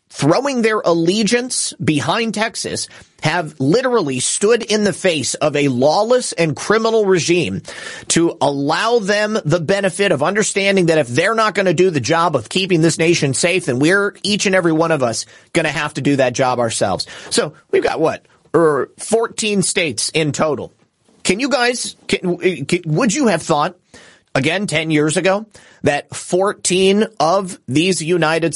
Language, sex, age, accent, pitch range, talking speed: English, male, 30-49, American, 150-200 Hz, 165 wpm